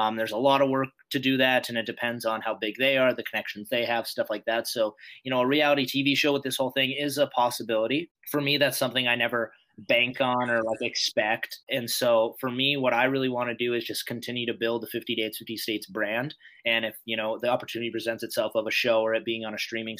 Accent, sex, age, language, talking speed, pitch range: American, male, 20-39, English, 260 wpm, 115-135 Hz